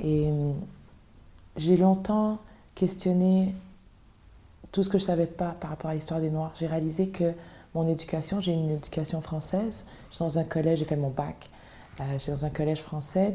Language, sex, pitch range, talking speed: French, female, 145-170 Hz, 190 wpm